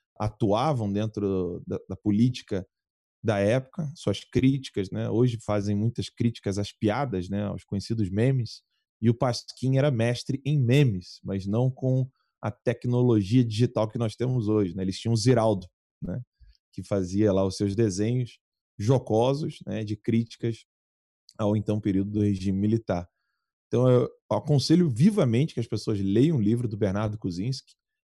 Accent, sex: Brazilian, male